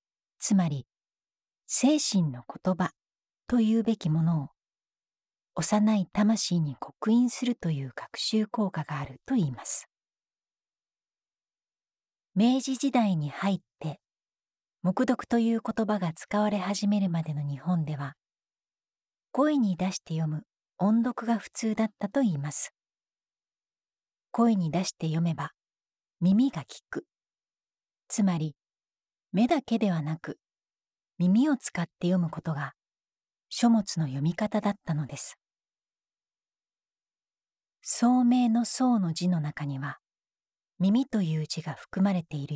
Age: 40-59